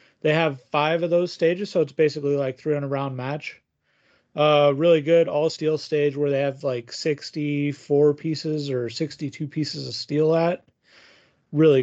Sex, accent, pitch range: male, American, 140-165 Hz